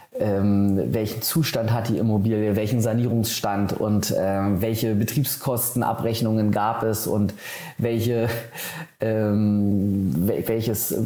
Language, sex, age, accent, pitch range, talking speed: German, male, 30-49, German, 105-120 Hz, 105 wpm